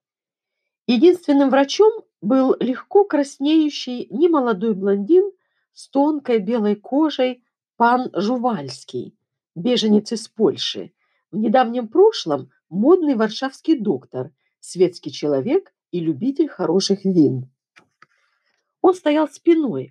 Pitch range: 165-275 Hz